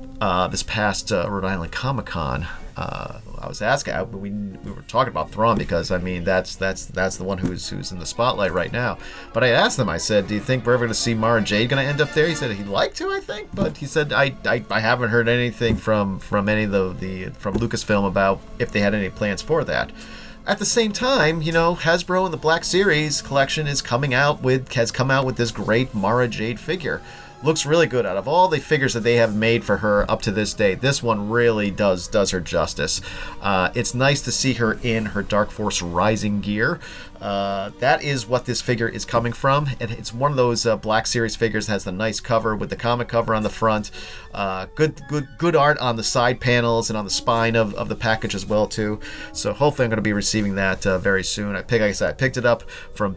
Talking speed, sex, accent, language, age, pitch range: 250 wpm, male, American, English, 40-59, 100-130 Hz